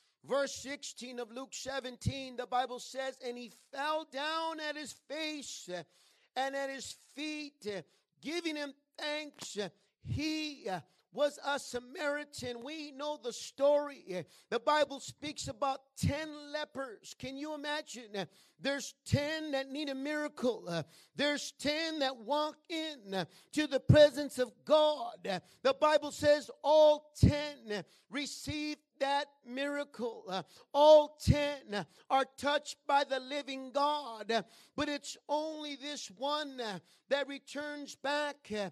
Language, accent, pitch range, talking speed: English, American, 245-295 Hz, 120 wpm